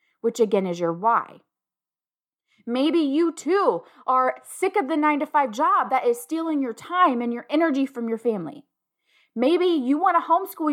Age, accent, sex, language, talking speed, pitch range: 20-39, American, female, English, 175 wpm, 230-305 Hz